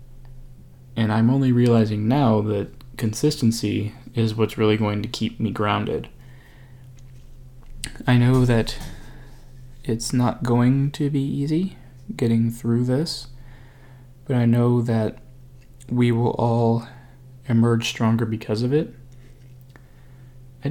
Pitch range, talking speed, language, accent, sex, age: 115-130 Hz, 115 wpm, English, American, male, 20-39